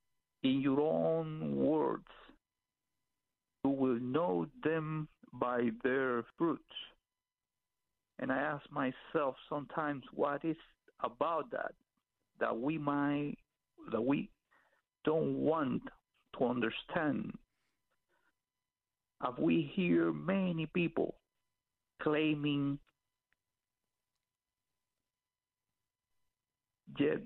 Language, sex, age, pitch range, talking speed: English, male, 50-69, 110-155 Hz, 80 wpm